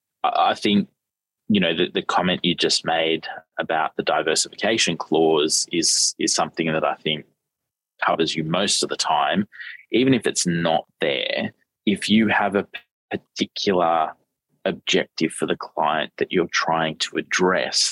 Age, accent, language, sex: 20-39, Australian, English, male